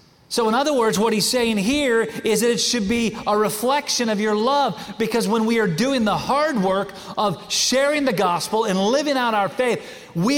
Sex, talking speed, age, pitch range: male, 210 wpm, 40-59, 200-245 Hz